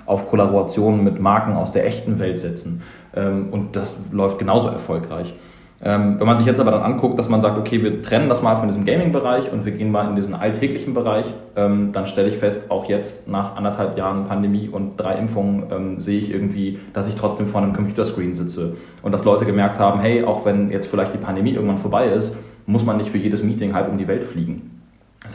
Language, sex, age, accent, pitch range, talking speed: German, male, 30-49, German, 100-110 Hz, 215 wpm